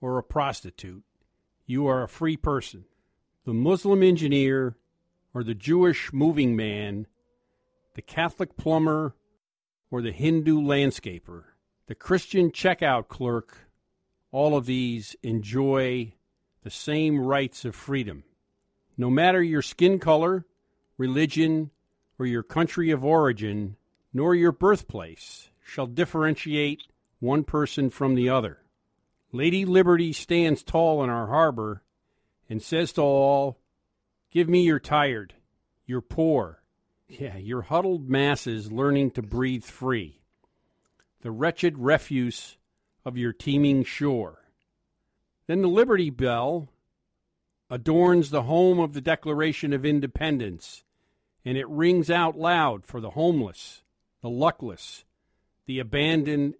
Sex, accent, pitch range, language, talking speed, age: male, American, 120-160 Hz, English, 120 wpm, 50-69